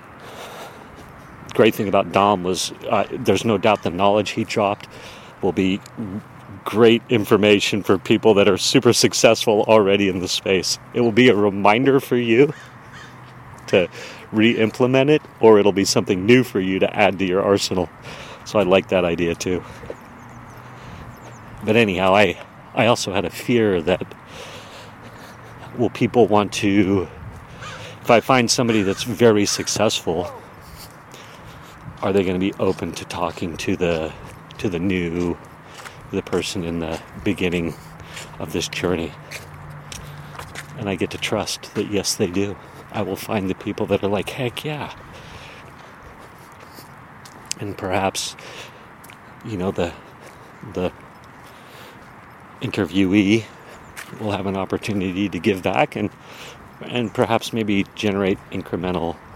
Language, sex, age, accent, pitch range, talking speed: English, male, 40-59, American, 95-115 Hz, 135 wpm